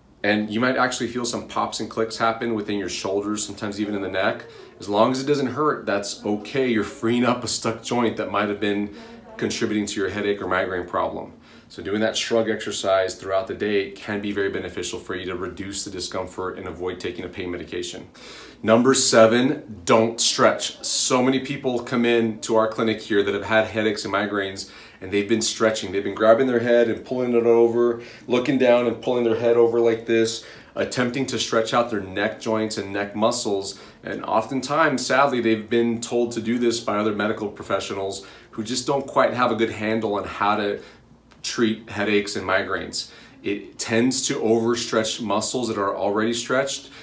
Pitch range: 105-120 Hz